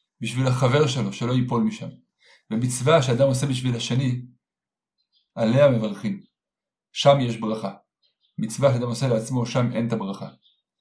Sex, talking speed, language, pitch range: male, 135 wpm, Hebrew, 125-155 Hz